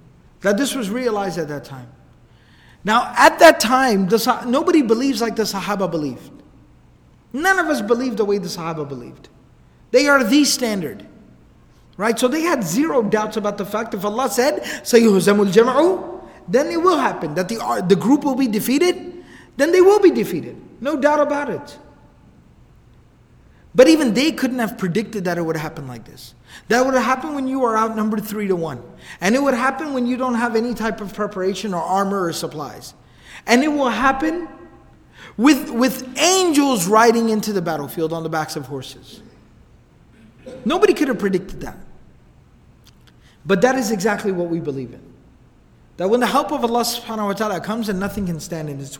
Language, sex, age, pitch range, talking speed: English, male, 30-49, 175-260 Hz, 180 wpm